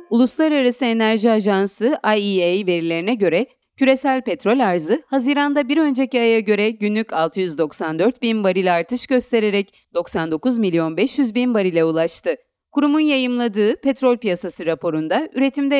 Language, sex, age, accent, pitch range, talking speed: Turkish, female, 40-59, native, 175-255 Hz, 120 wpm